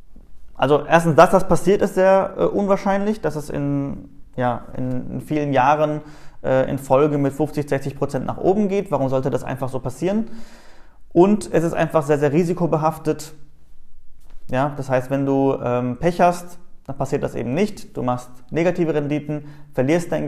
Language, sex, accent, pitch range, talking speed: German, male, German, 135-175 Hz, 170 wpm